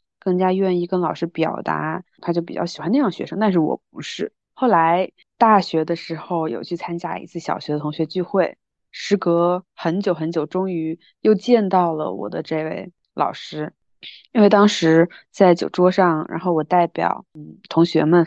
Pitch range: 165-195 Hz